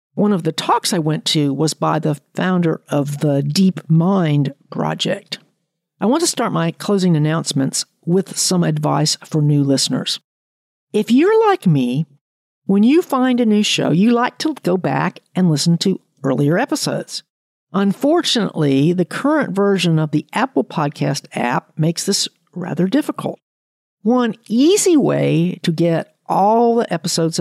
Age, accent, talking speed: 50-69, American, 155 wpm